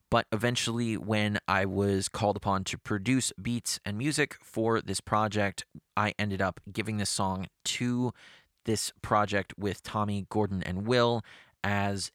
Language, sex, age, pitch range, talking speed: English, male, 30-49, 95-120 Hz, 150 wpm